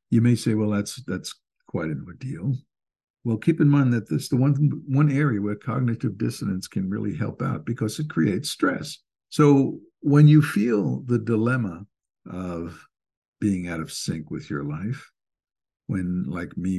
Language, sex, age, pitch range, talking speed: English, male, 60-79, 105-150 Hz, 170 wpm